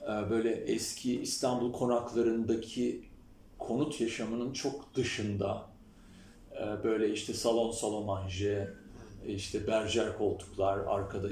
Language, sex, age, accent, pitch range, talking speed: Turkish, male, 40-59, native, 100-140 Hz, 90 wpm